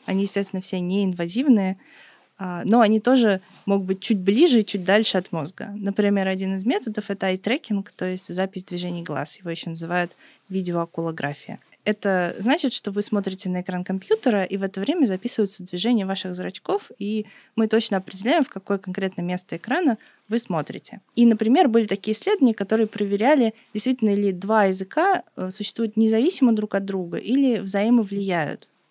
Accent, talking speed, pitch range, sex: native, 160 wpm, 185-230 Hz, female